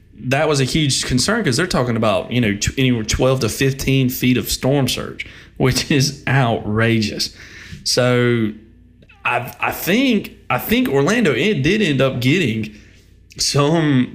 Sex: male